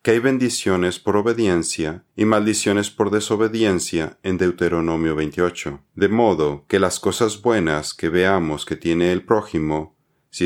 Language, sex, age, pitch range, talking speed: Spanish, male, 40-59, 85-105 Hz, 145 wpm